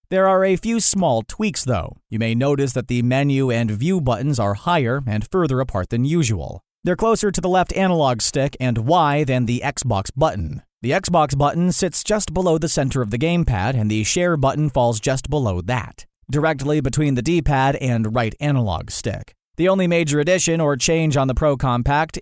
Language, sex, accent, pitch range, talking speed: English, male, American, 120-165 Hz, 195 wpm